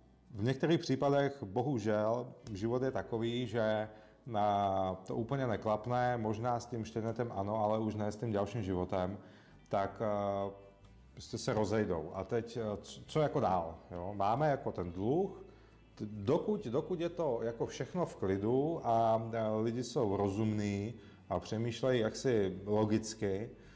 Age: 30-49